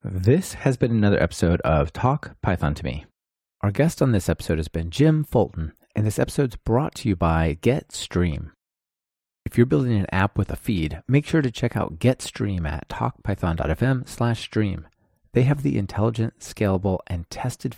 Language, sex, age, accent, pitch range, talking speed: English, male, 30-49, American, 95-130 Hz, 170 wpm